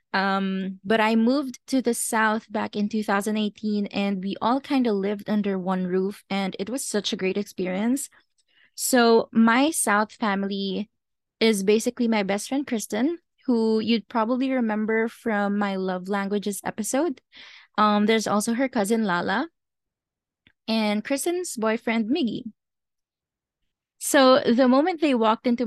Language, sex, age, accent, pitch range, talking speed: English, female, 20-39, Filipino, 200-245 Hz, 145 wpm